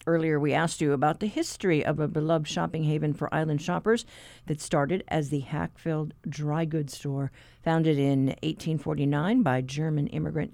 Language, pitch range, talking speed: English, 145-190 Hz, 165 wpm